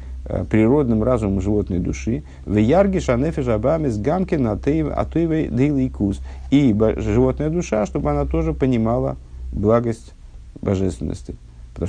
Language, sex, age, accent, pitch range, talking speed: Russian, male, 50-69, native, 85-110 Hz, 70 wpm